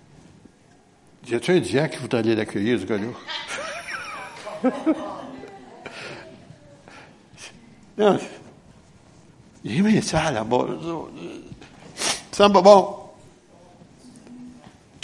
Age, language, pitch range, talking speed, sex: 60-79, French, 110-140 Hz, 90 wpm, male